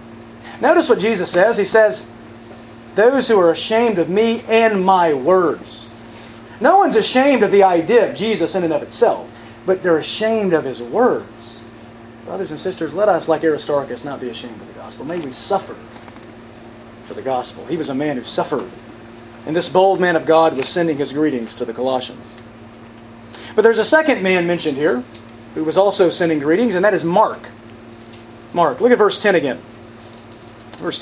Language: English